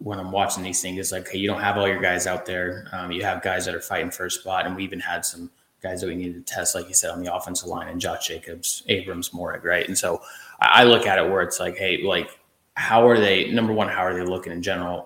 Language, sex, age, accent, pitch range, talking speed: English, male, 20-39, American, 90-105 Hz, 285 wpm